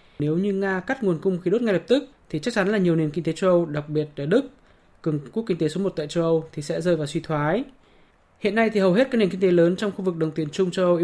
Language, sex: Vietnamese, male